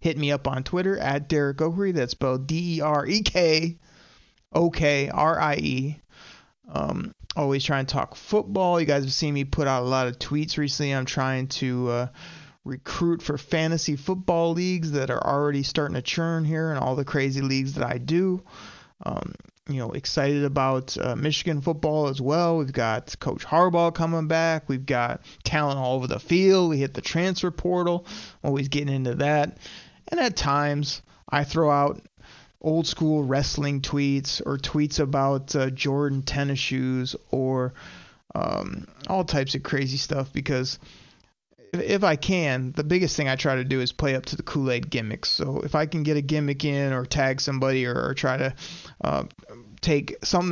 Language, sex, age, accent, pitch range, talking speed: English, male, 30-49, American, 135-160 Hz, 185 wpm